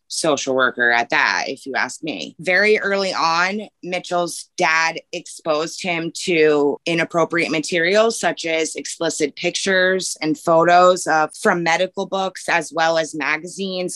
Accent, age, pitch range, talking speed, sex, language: American, 20-39, 150-190 Hz, 140 wpm, female, English